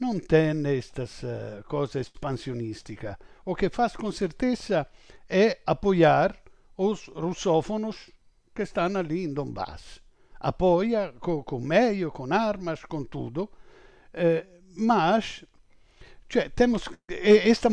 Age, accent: 60-79, Italian